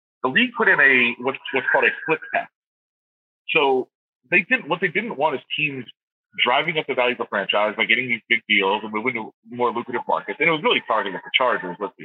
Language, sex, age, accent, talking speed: English, male, 30-49, American, 235 wpm